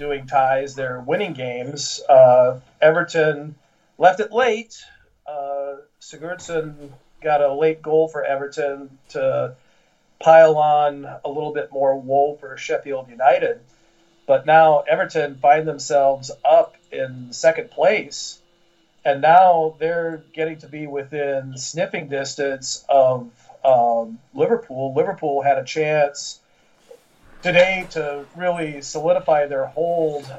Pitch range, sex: 140-165 Hz, male